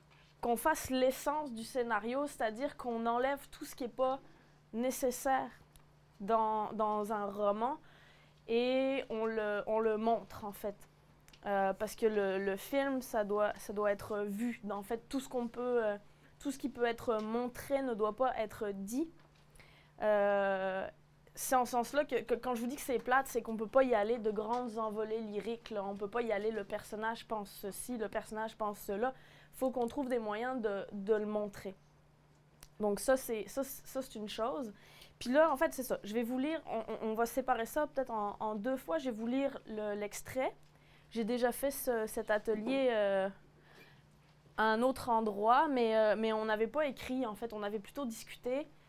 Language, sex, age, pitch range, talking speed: French, female, 20-39, 210-255 Hz, 205 wpm